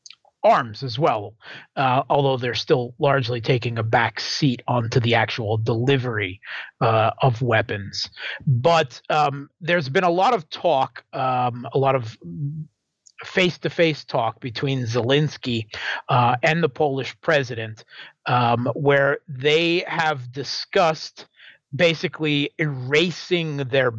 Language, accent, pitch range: English, American, 120-150 Hz